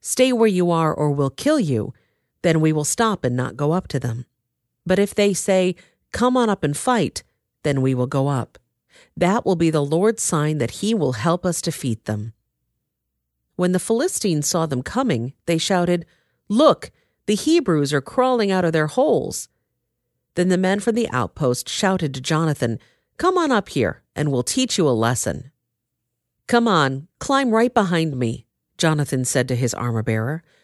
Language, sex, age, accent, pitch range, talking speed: English, female, 40-59, American, 125-200 Hz, 180 wpm